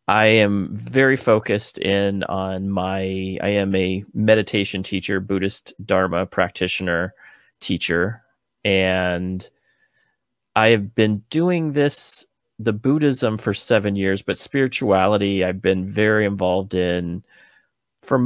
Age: 30-49